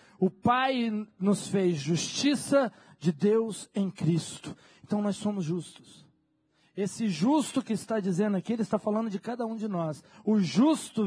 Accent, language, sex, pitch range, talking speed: Brazilian, Portuguese, male, 170-275 Hz, 155 wpm